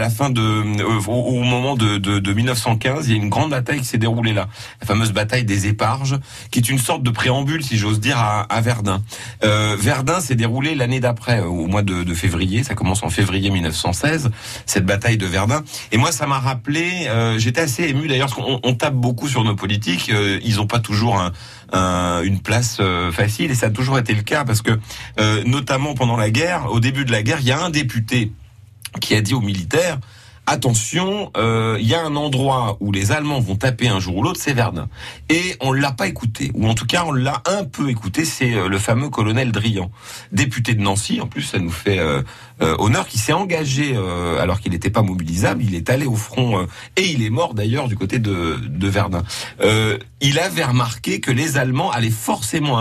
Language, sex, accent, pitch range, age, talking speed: French, male, French, 105-130 Hz, 40-59, 225 wpm